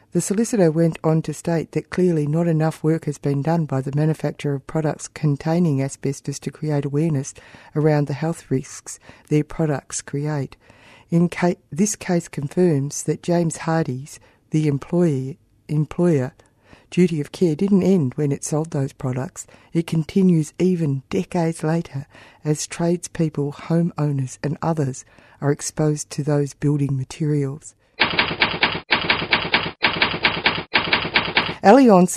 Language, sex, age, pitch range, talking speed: English, female, 50-69, 145-170 Hz, 125 wpm